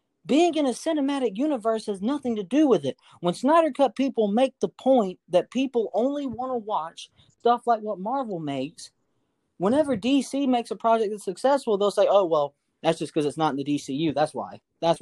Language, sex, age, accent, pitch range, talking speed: English, male, 40-59, American, 195-275 Hz, 205 wpm